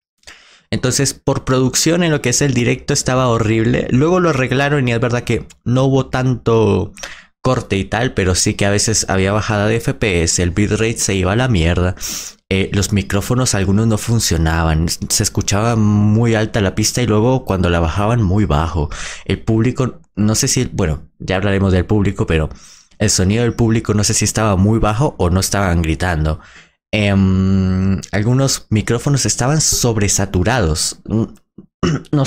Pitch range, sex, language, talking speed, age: 95-125 Hz, male, Spanish, 165 wpm, 20-39